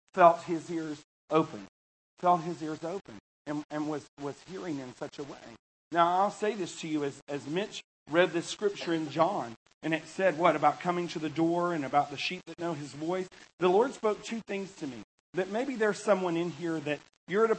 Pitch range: 170-225 Hz